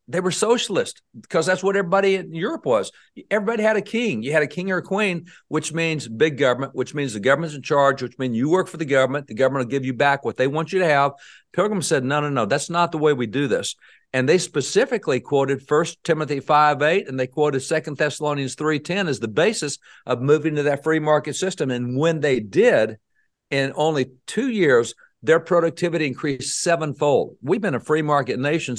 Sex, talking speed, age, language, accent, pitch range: male, 215 wpm, 50-69, English, American, 130-160 Hz